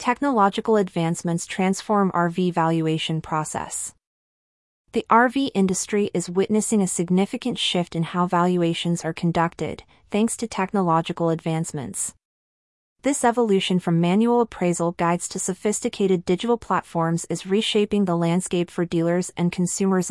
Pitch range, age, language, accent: 165-200 Hz, 30-49, English, American